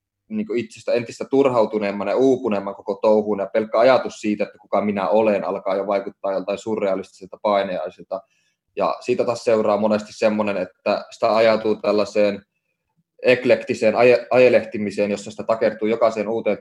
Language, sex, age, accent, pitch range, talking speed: Finnish, male, 20-39, native, 100-115 Hz, 140 wpm